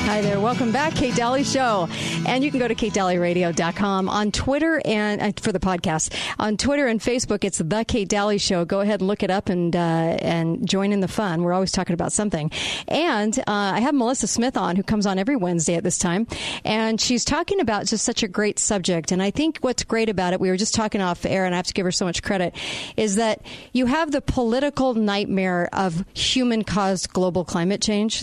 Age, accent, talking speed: 50-69, American, 220 wpm